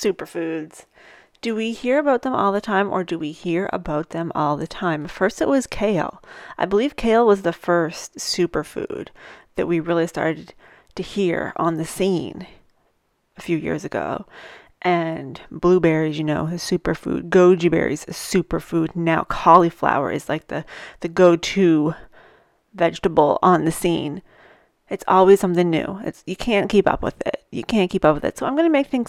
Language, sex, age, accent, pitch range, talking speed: English, female, 30-49, American, 170-210 Hz, 175 wpm